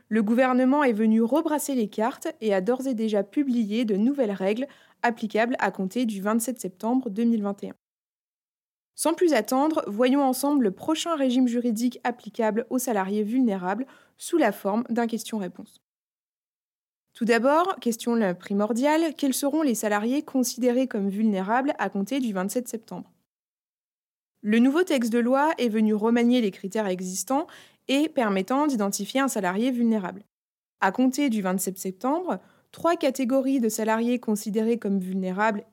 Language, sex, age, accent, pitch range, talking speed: French, female, 20-39, French, 210-270 Hz, 145 wpm